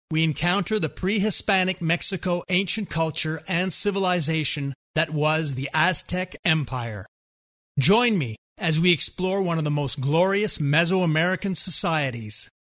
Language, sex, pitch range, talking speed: English, male, 145-180 Hz, 120 wpm